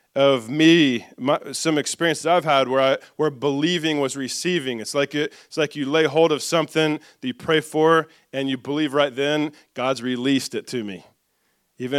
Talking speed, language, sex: 190 wpm, English, male